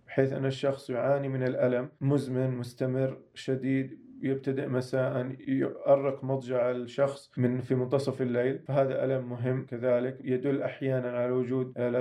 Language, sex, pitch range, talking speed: Arabic, male, 125-140 Hz, 135 wpm